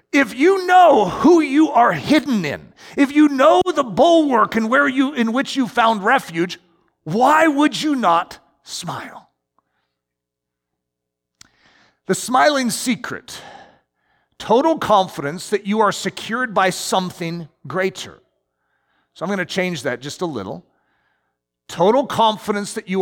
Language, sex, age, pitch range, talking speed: English, male, 40-59, 170-255 Hz, 130 wpm